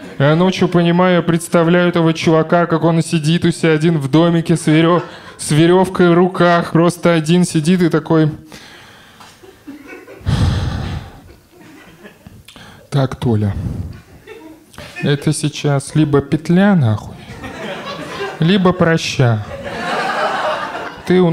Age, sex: 20-39, male